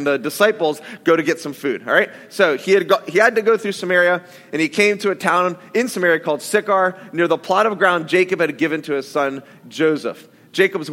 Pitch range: 160-210 Hz